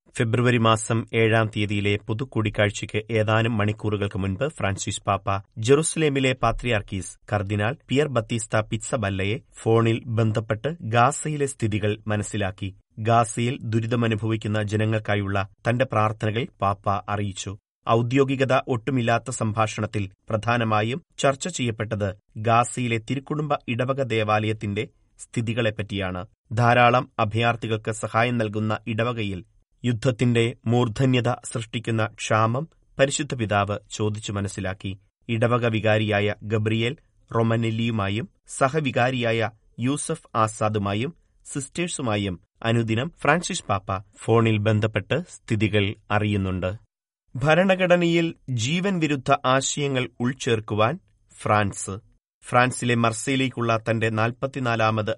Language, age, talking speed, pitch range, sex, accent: Malayalam, 30-49, 85 wpm, 105-125 Hz, male, native